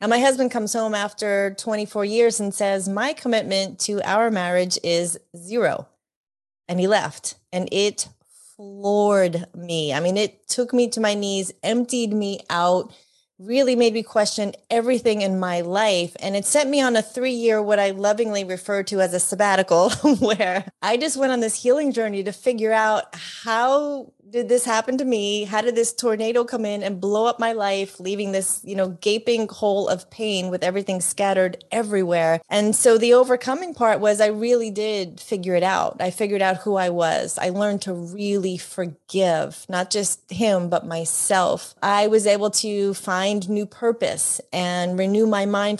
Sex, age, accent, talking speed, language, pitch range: female, 30-49, American, 180 wpm, English, 185-220 Hz